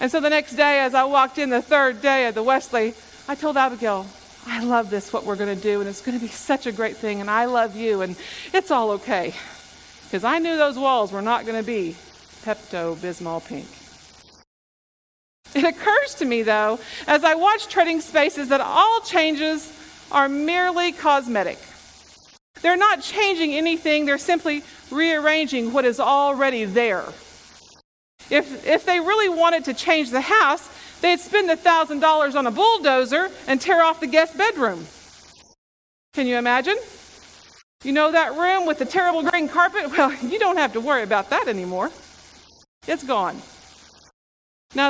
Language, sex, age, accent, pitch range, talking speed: English, female, 40-59, American, 235-330 Hz, 170 wpm